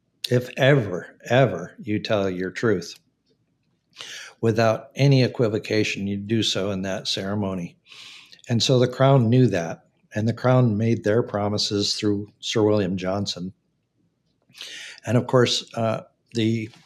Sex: male